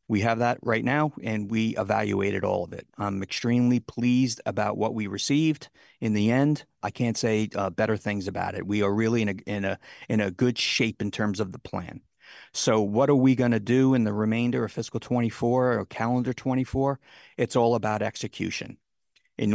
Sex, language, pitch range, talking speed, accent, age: male, English, 105-125 Hz, 195 wpm, American, 50-69